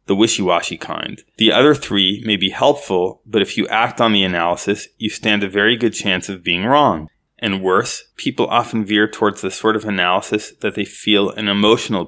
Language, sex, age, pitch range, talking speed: English, male, 20-39, 100-115 Hz, 200 wpm